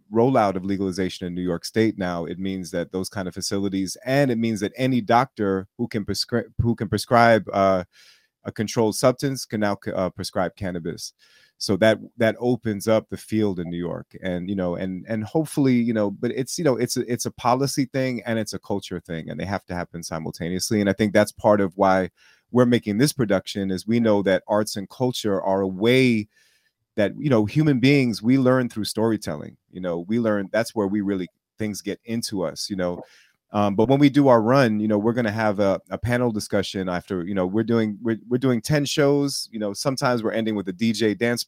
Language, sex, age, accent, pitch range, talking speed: English, male, 30-49, American, 95-120 Hz, 225 wpm